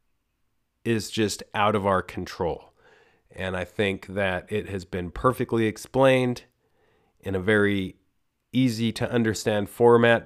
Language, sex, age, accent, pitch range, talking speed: English, male, 30-49, American, 95-120 Hz, 115 wpm